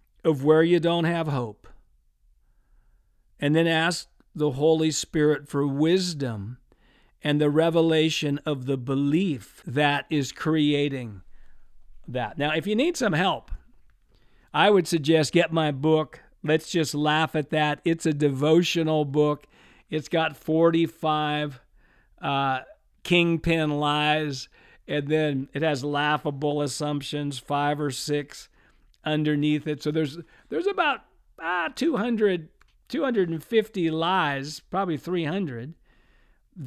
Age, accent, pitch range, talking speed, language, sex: 50-69, American, 150-180 Hz, 120 wpm, English, male